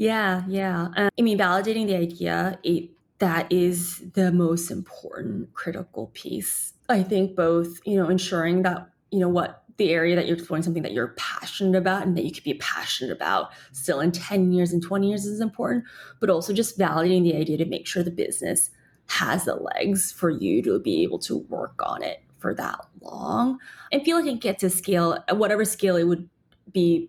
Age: 20-39